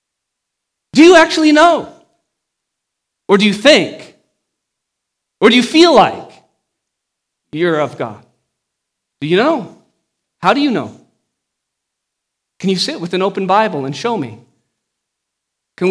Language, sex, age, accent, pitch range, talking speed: English, male, 40-59, American, 160-230 Hz, 130 wpm